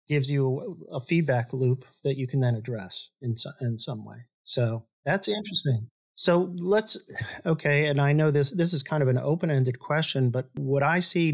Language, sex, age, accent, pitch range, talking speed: English, male, 50-69, American, 125-150 Hz, 195 wpm